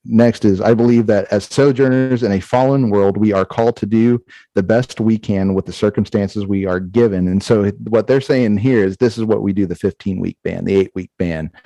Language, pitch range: English, 100-120 Hz